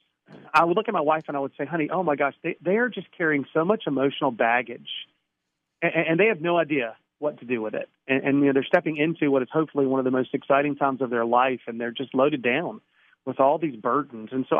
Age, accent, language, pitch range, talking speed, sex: 40-59, American, English, 135-170 Hz, 265 wpm, male